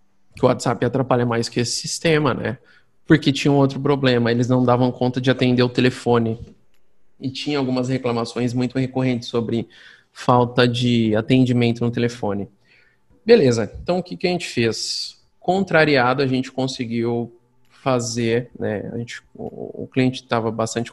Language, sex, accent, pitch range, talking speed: Portuguese, male, Brazilian, 120-140 Hz, 160 wpm